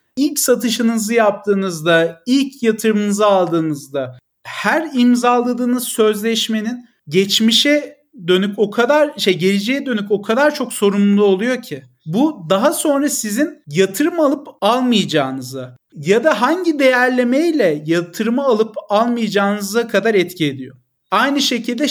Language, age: Turkish, 40-59